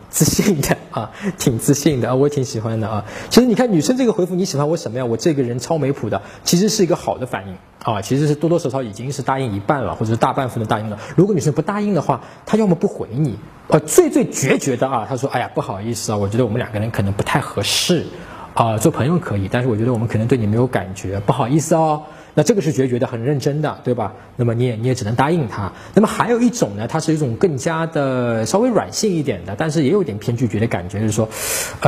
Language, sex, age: Chinese, male, 20-39